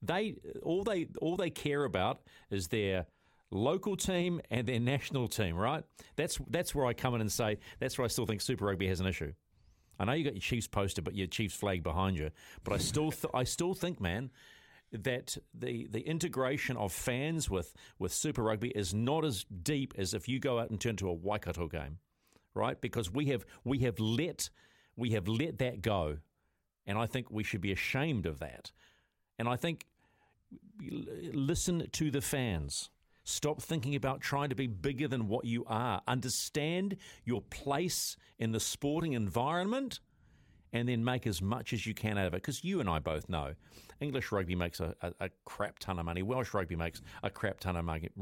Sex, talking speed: male, 200 wpm